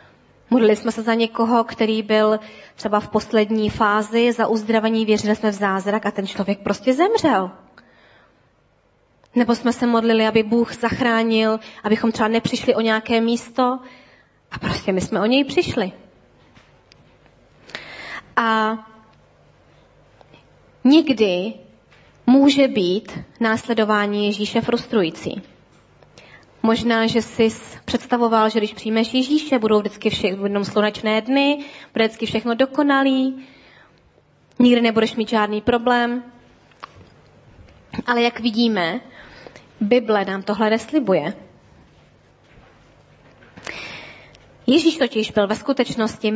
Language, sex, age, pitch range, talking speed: Czech, female, 20-39, 210-245 Hz, 105 wpm